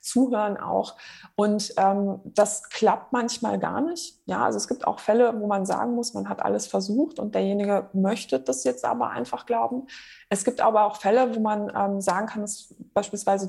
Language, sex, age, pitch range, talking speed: German, female, 20-39, 195-230 Hz, 190 wpm